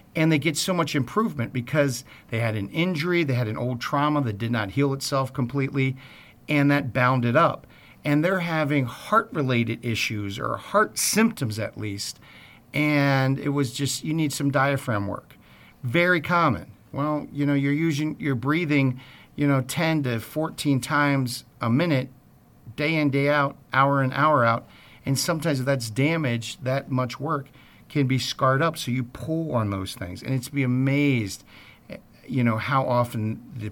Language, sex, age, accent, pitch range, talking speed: English, male, 50-69, American, 115-145 Hz, 175 wpm